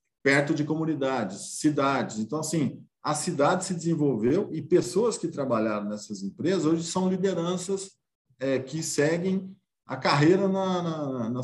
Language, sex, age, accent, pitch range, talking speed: Portuguese, male, 50-69, Brazilian, 130-170 Hz, 130 wpm